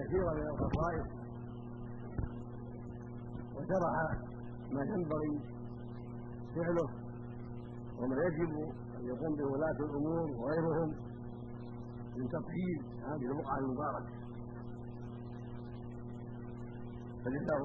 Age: 60-79